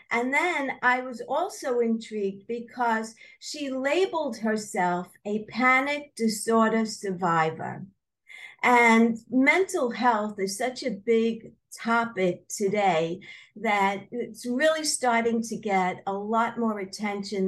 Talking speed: 115 wpm